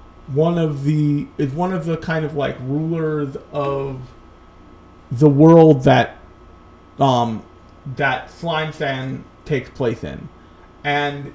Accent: American